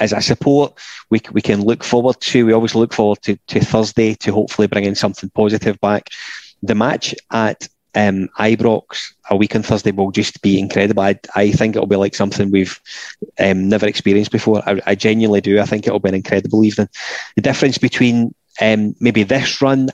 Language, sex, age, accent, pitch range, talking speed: English, male, 30-49, British, 105-120 Hz, 200 wpm